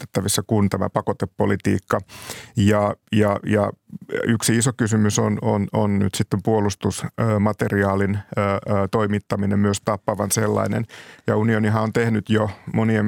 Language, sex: Finnish, male